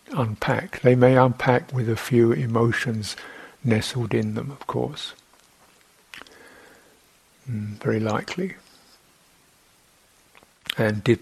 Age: 60-79